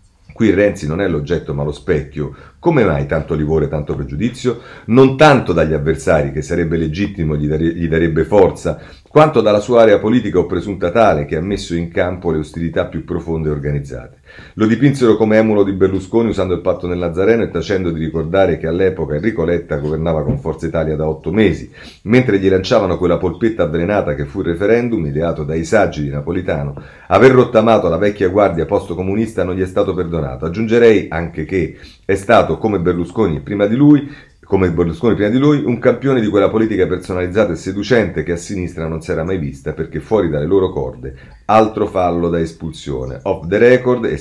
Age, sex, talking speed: 40-59, male, 190 wpm